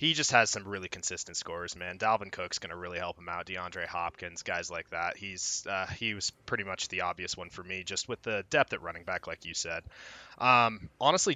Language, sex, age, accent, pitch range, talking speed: English, male, 20-39, American, 105-130 Hz, 230 wpm